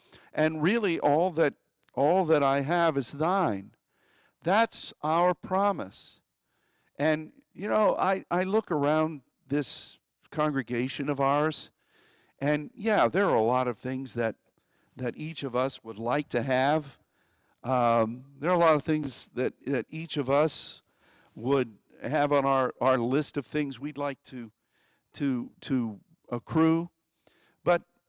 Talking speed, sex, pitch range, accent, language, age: 145 wpm, male, 130-170 Hz, American, English, 50-69